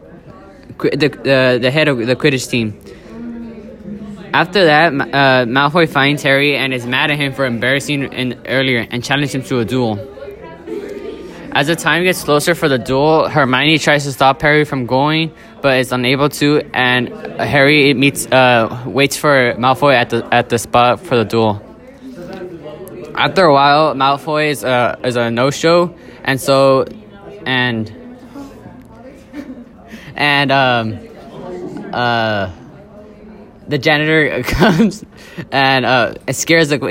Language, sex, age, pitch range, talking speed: English, male, 10-29, 125-150 Hz, 140 wpm